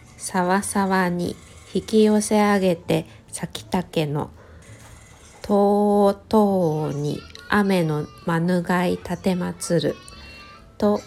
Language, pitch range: Japanese, 150-200 Hz